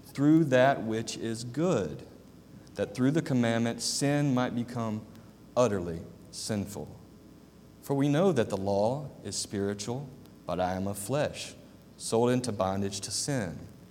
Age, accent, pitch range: 40-59, American, 100-130 Hz